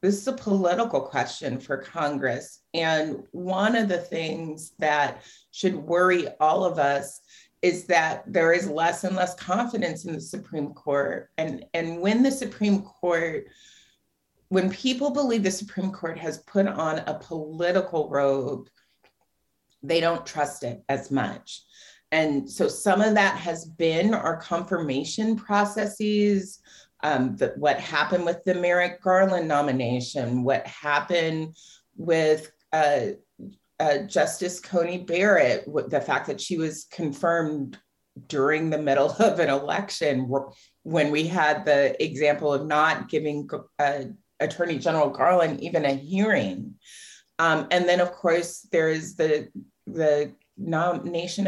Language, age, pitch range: English, 40-59, 150-185 Hz